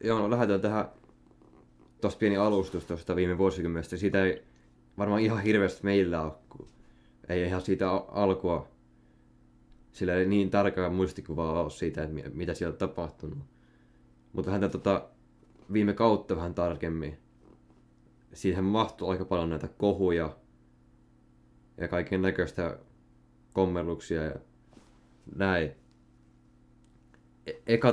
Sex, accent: male, native